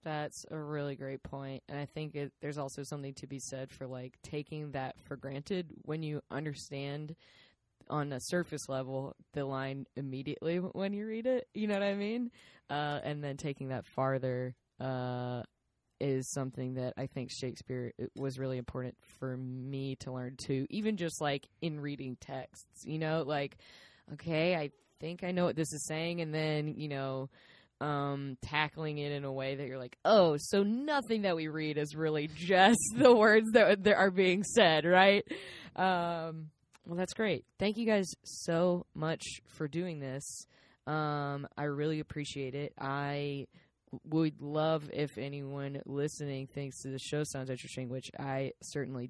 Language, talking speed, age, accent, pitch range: English, 175 wpm, 20-39, American, 135-160 Hz